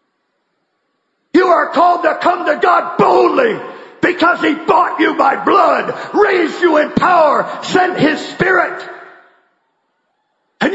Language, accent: English, American